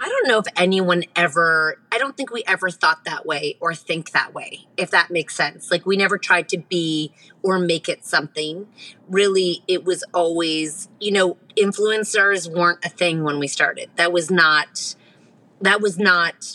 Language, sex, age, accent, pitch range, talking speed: English, female, 30-49, American, 165-200 Hz, 185 wpm